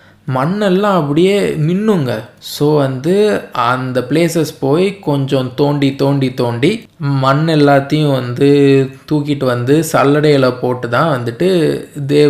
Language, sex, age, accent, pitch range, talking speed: Tamil, male, 20-39, native, 135-170 Hz, 105 wpm